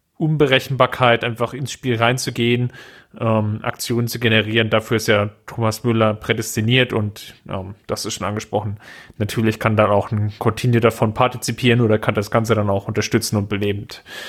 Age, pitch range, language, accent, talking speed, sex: 30-49, 110-130 Hz, German, German, 160 wpm, male